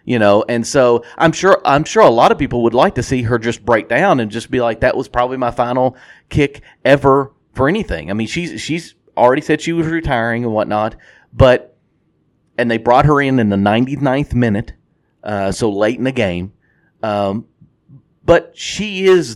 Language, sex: English, male